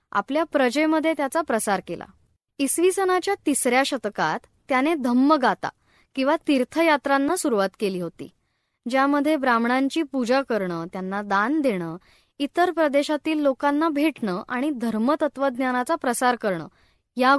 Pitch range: 225-300 Hz